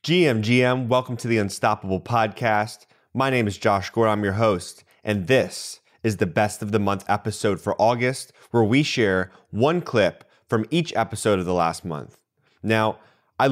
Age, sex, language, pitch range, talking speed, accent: 20-39, male, English, 95-120 Hz, 180 wpm, American